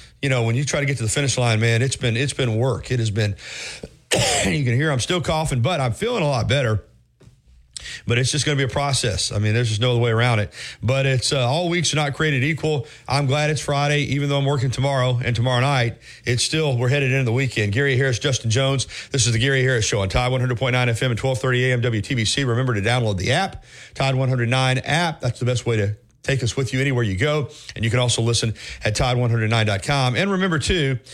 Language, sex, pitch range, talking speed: English, male, 115-140 Hz, 240 wpm